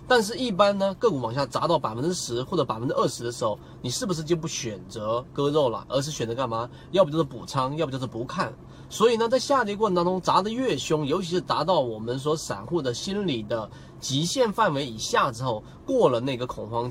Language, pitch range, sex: Chinese, 120-175 Hz, male